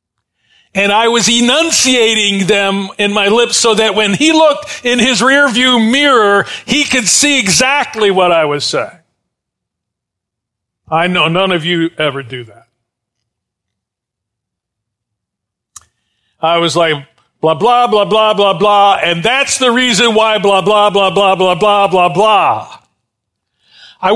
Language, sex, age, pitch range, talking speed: English, male, 50-69, 150-230 Hz, 140 wpm